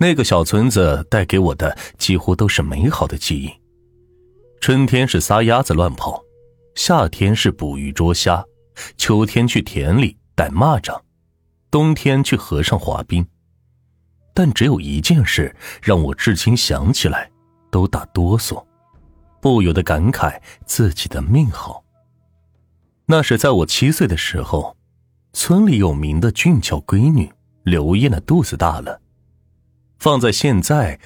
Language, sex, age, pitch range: Chinese, male, 30-49, 85-120 Hz